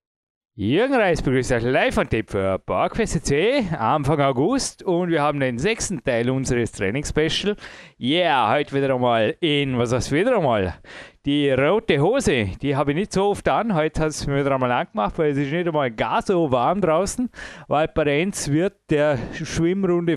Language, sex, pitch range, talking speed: German, male, 140-180 Hz, 175 wpm